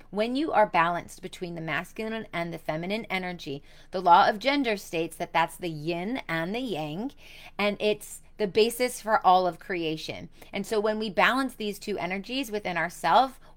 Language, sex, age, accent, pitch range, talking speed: English, female, 30-49, American, 180-235 Hz, 180 wpm